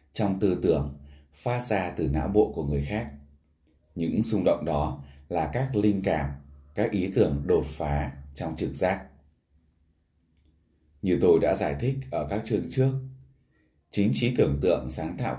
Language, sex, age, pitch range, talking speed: Vietnamese, male, 20-39, 70-95 Hz, 165 wpm